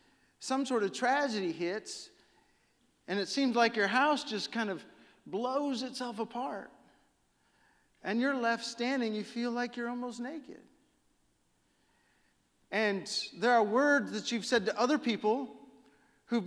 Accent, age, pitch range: American, 40-59, 160-235 Hz